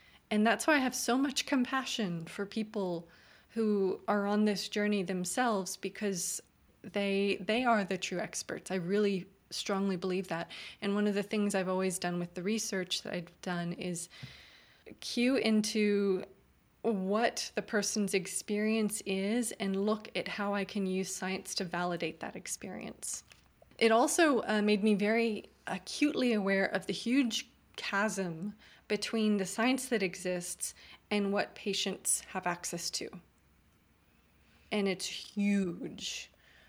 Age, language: 20-39, English